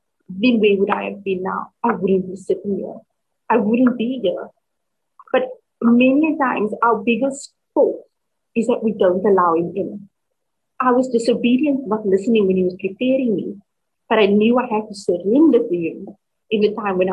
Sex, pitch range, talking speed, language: female, 200-275 Hz, 180 wpm, English